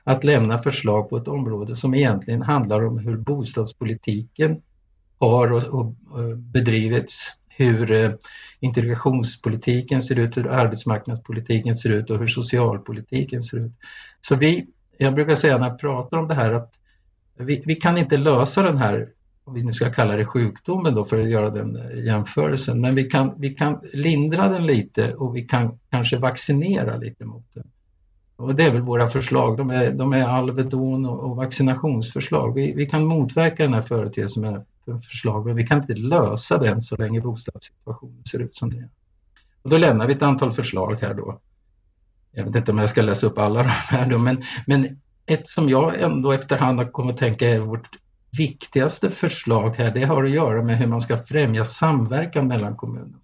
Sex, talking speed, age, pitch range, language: male, 175 wpm, 50-69, 110-135 Hz, Swedish